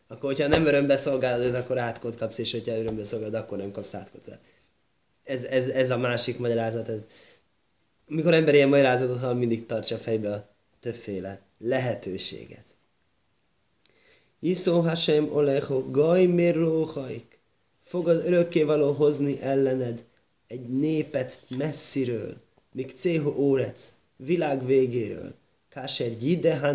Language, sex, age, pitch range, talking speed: Hungarian, male, 20-39, 115-145 Hz, 120 wpm